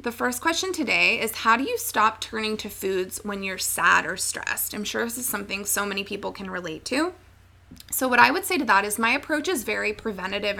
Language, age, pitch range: English, 20-39, 205-255 Hz